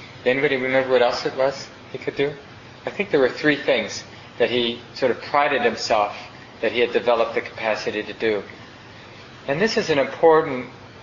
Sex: male